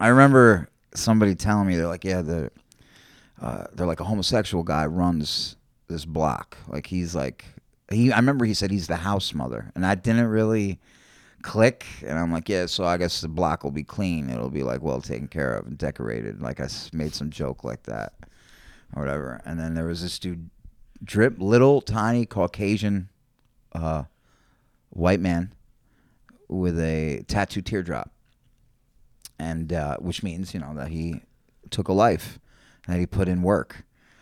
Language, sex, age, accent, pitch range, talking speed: English, male, 30-49, American, 80-110 Hz, 175 wpm